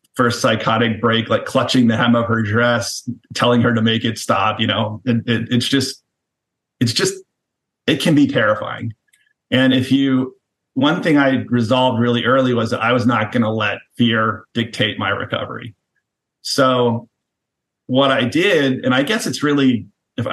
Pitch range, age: 115-135 Hz, 30-49